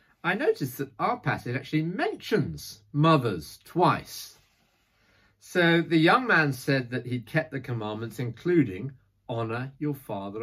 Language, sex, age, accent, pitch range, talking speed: English, male, 50-69, British, 110-160 Hz, 130 wpm